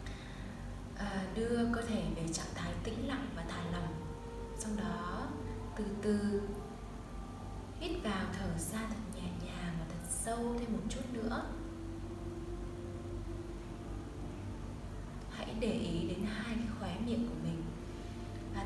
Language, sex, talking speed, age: Vietnamese, female, 130 wpm, 20-39